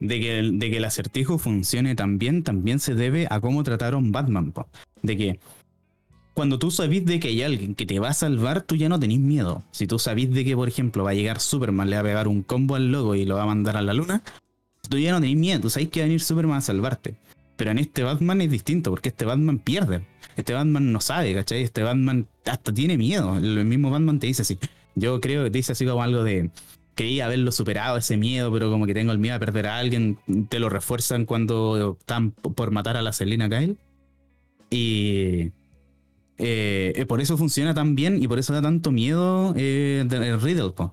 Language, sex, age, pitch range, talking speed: Spanish, male, 20-39, 105-145 Hz, 225 wpm